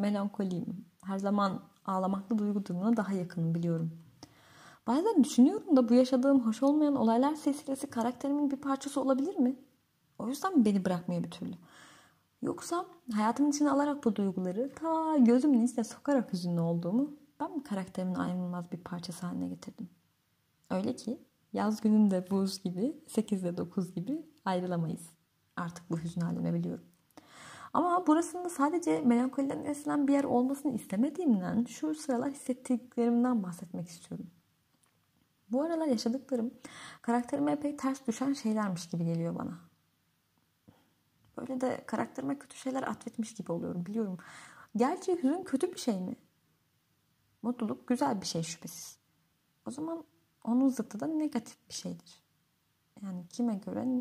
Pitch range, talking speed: 190-275 Hz, 130 wpm